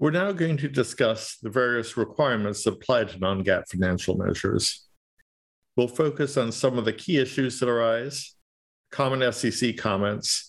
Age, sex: 50-69, male